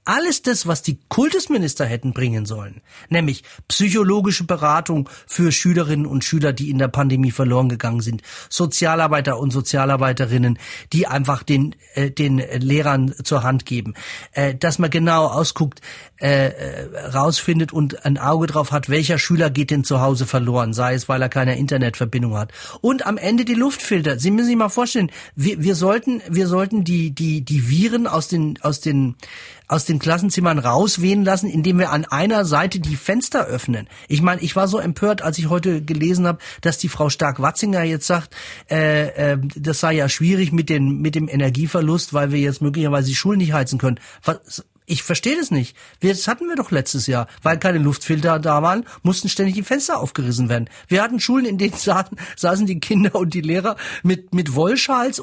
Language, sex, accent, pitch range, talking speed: German, male, German, 140-190 Hz, 180 wpm